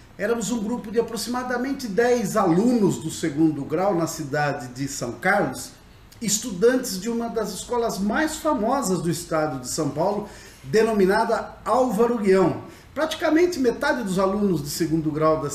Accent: Brazilian